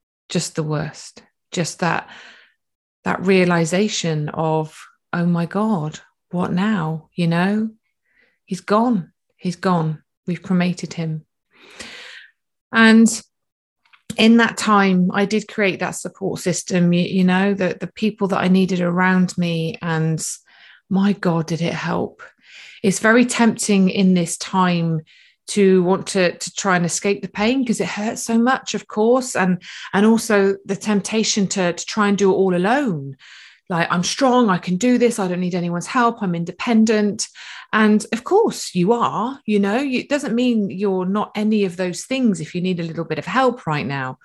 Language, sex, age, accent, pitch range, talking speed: English, female, 30-49, British, 175-215 Hz, 170 wpm